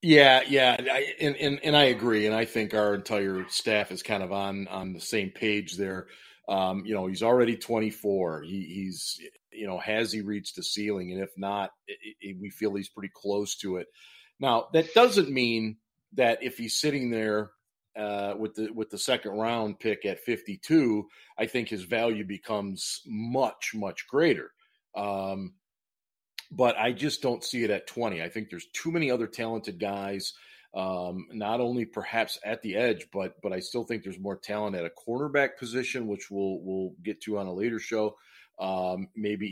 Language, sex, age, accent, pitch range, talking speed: English, male, 40-59, American, 100-120 Hz, 185 wpm